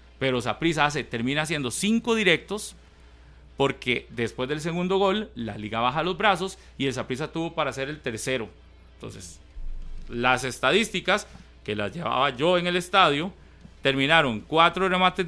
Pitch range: 125-180 Hz